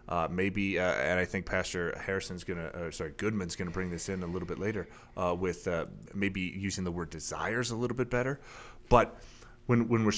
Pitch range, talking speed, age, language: 85-120 Hz, 225 wpm, 30-49, English